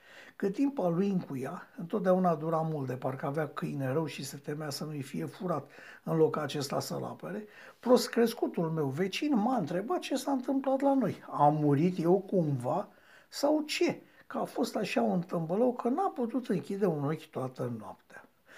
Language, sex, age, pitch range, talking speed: Romanian, male, 60-79, 155-235 Hz, 180 wpm